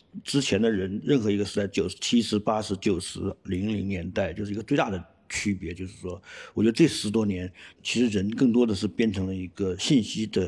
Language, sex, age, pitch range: Chinese, male, 50-69, 100-155 Hz